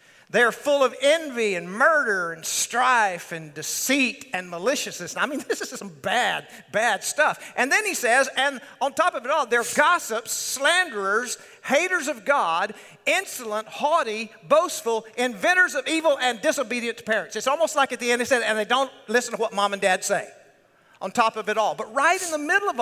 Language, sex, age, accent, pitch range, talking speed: English, male, 50-69, American, 205-265 Hz, 195 wpm